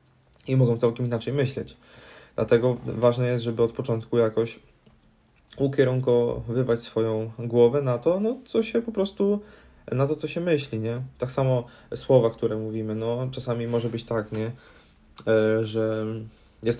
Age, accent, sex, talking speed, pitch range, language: 20-39, native, male, 145 wpm, 110-120 Hz, Polish